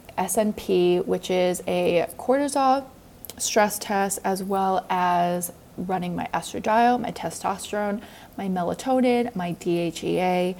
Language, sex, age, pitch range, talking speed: English, female, 20-39, 180-220 Hz, 110 wpm